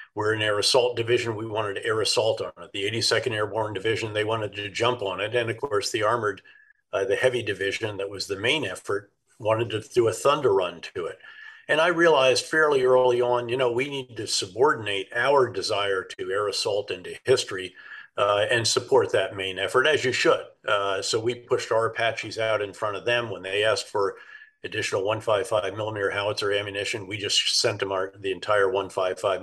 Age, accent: 50-69, American